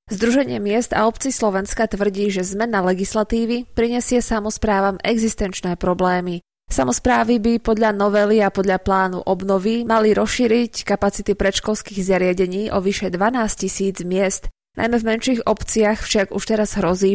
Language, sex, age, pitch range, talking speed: Slovak, female, 20-39, 190-225 Hz, 135 wpm